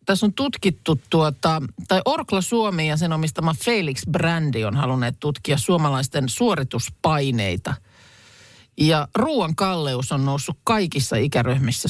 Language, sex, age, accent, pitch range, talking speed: Finnish, male, 50-69, native, 130-170 Hz, 120 wpm